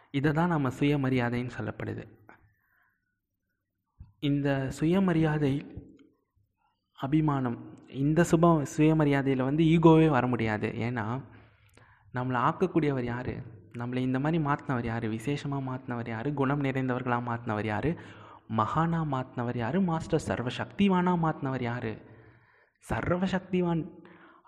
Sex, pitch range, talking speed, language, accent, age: male, 115-150 Hz, 95 wpm, Tamil, native, 20-39